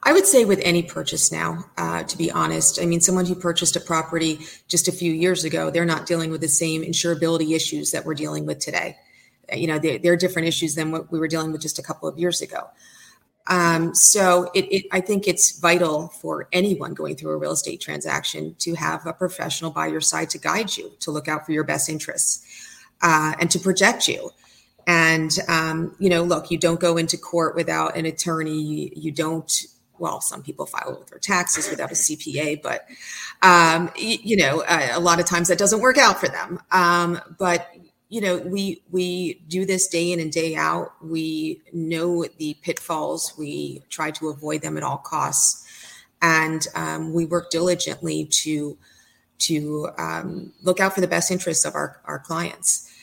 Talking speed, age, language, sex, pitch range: 200 wpm, 30-49, English, female, 155-180 Hz